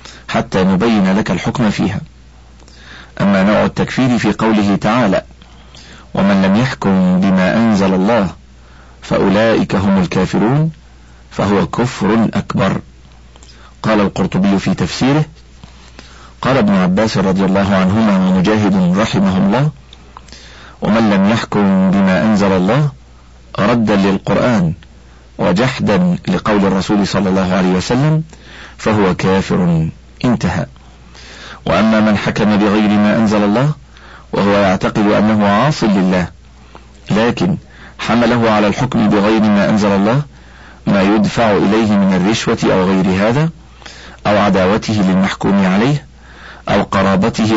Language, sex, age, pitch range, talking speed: Arabic, male, 50-69, 70-115 Hz, 110 wpm